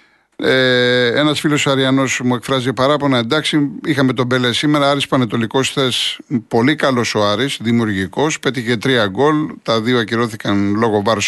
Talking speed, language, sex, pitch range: 145 wpm, Greek, male, 115-145 Hz